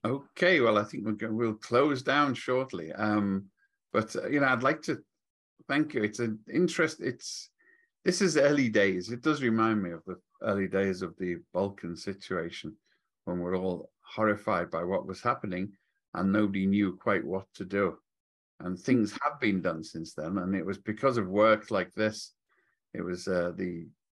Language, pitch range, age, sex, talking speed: English, 95-120 Hz, 50-69, male, 185 wpm